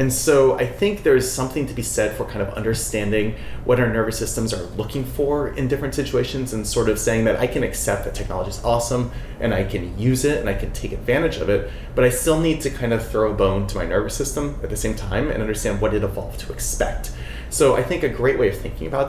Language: English